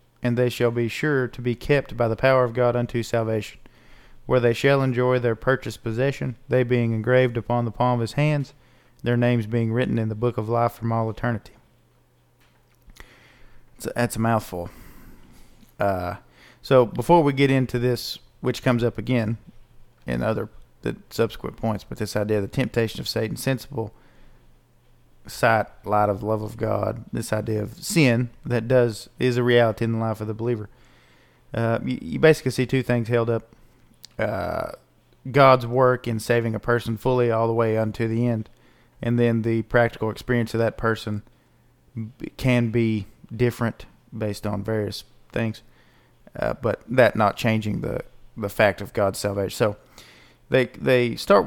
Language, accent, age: English, American, 40-59